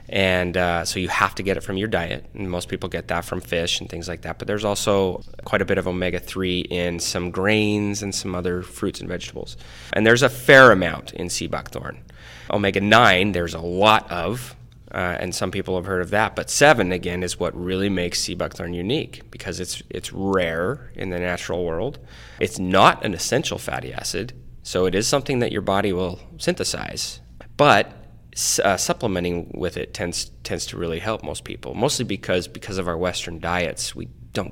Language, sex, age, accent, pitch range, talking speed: English, male, 20-39, American, 90-105 Hz, 200 wpm